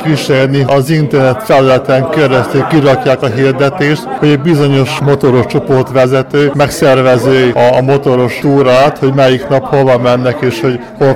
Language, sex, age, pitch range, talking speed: Hungarian, male, 20-39, 125-145 Hz, 135 wpm